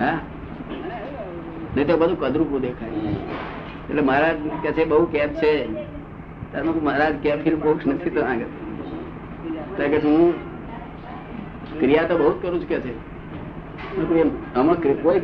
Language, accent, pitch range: Gujarati, native, 150-170 Hz